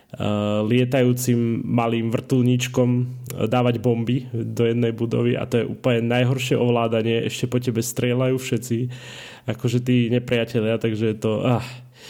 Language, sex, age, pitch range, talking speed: Slovak, male, 20-39, 115-125 Hz, 135 wpm